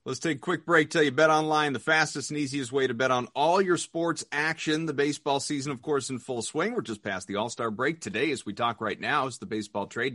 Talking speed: 270 wpm